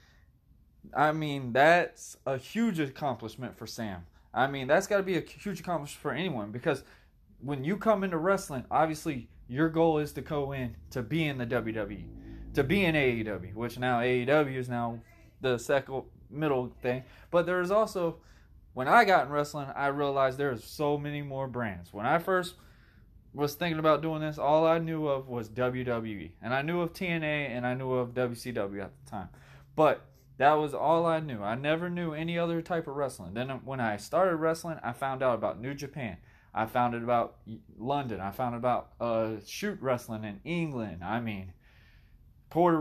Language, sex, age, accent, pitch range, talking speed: English, male, 20-39, American, 110-155 Hz, 190 wpm